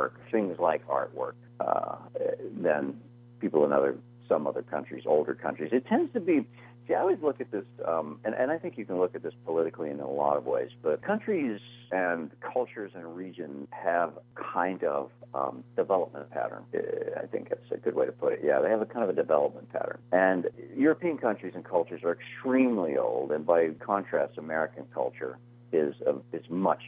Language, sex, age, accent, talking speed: English, male, 50-69, American, 190 wpm